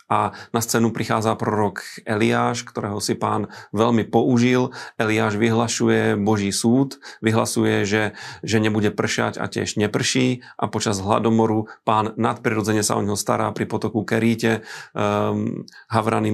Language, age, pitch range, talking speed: Slovak, 30-49, 105-115 Hz, 135 wpm